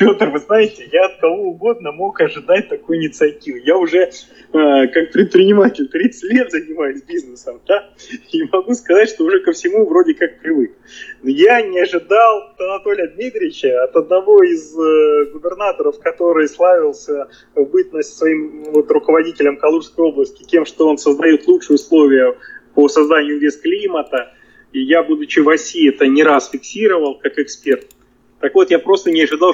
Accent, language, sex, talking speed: native, Russian, male, 150 wpm